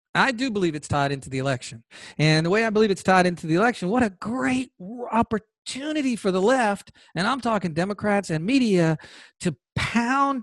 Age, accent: 40-59, American